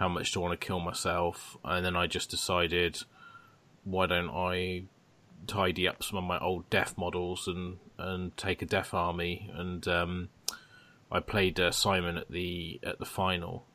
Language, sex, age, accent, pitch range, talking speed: English, male, 20-39, British, 90-105 Hz, 180 wpm